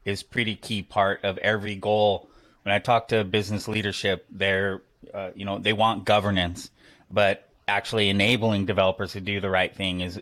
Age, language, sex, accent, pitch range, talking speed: 20-39, English, male, American, 95-115 Hz, 175 wpm